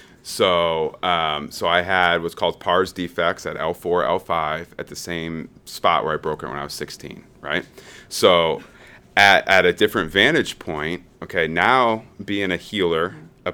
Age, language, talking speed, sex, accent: 30-49, English, 170 wpm, male, American